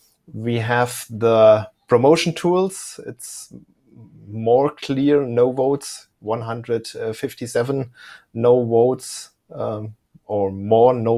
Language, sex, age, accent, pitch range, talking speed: English, male, 30-49, German, 110-135 Hz, 90 wpm